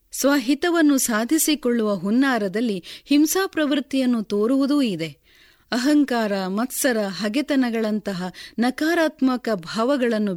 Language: Kannada